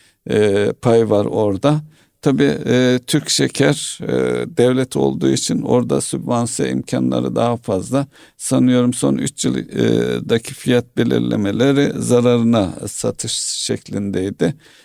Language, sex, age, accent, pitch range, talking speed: Turkish, male, 50-69, native, 105-130 Hz, 95 wpm